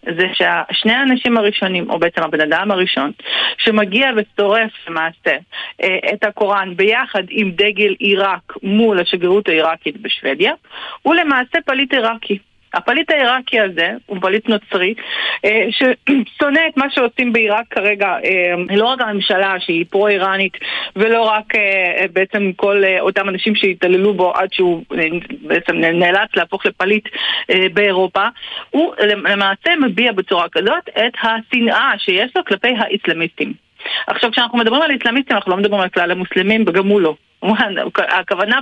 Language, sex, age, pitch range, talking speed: Hebrew, female, 40-59, 185-235 Hz, 130 wpm